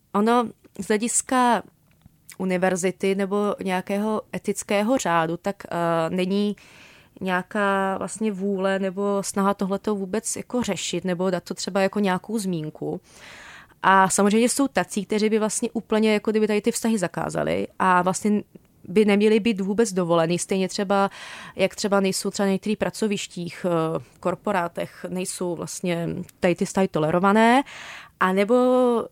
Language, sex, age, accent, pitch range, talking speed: Czech, female, 20-39, native, 185-215 Hz, 135 wpm